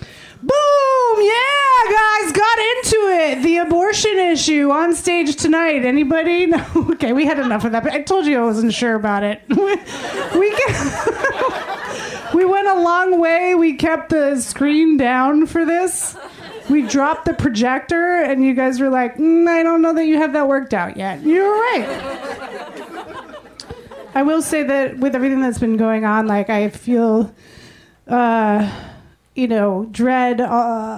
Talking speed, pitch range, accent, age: 160 wpm, 245-335 Hz, American, 30-49